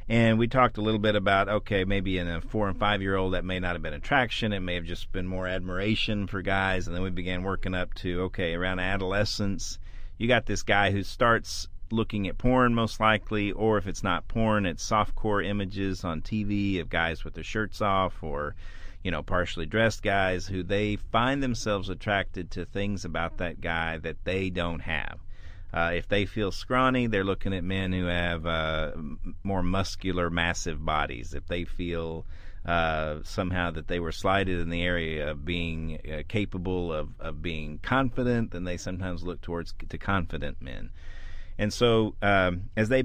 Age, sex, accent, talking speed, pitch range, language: 40-59, male, American, 190 wpm, 85-105 Hz, English